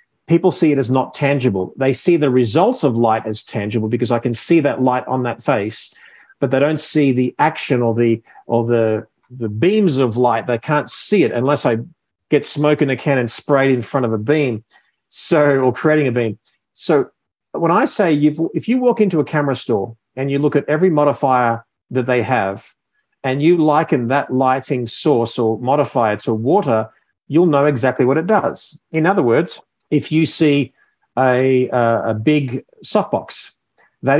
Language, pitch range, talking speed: English, 120-150 Hz, 190 wpm